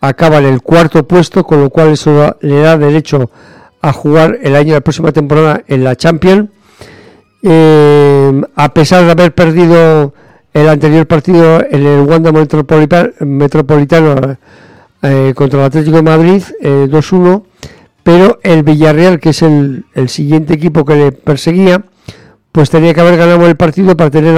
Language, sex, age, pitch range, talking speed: English, male, 50-69, 135-160 Hz, 160 wpm